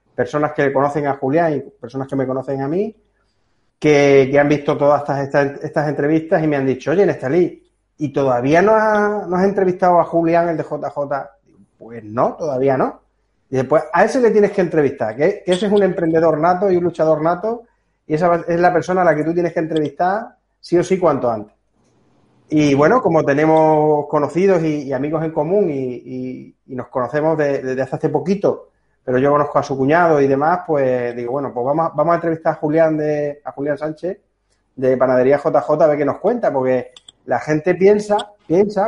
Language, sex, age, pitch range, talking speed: Spanish, male, 30-49, 140-175 Hz, 205 wpm